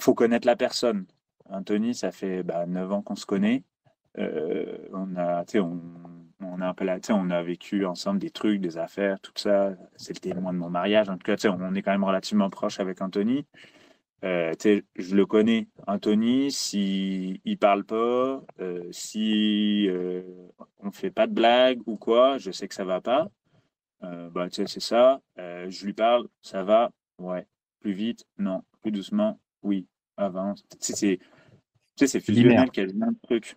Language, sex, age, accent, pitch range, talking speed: French, male, 30-49, French, 95-135 Hz, 185 wpm